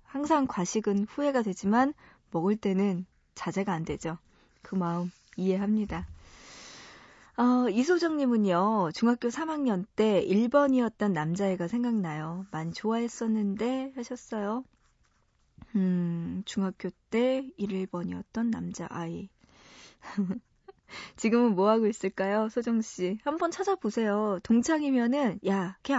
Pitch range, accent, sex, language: 190-245 Hz, native, female, Korean